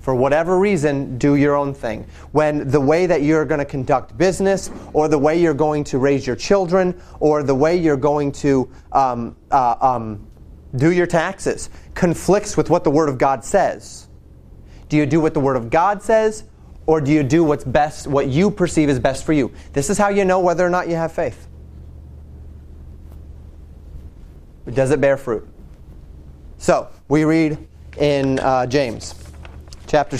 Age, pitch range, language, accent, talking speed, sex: 30-49, 115-155 Hz, English, American, 175 wpm, male